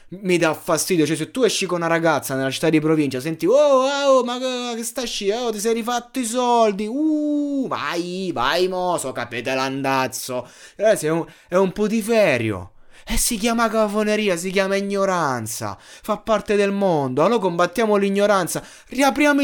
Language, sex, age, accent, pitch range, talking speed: Italian, male, 20-39, native, 155-220 Hz, 155 wpm